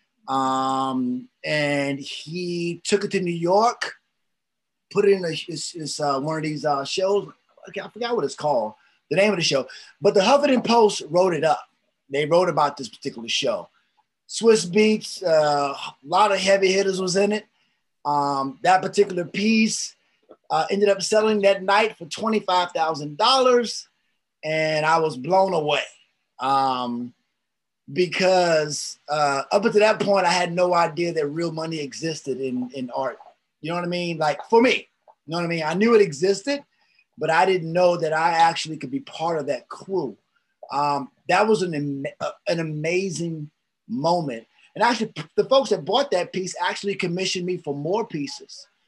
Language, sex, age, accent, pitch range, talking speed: English, male, 30-49, American, 155-200 Hz, 170 wpm